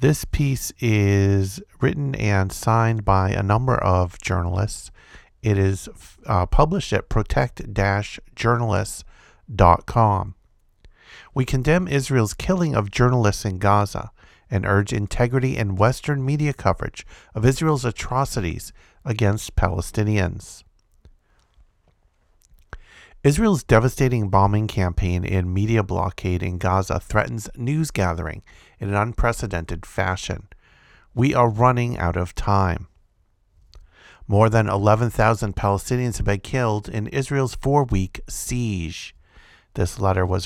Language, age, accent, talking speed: English, 50-69, American, 110 wpm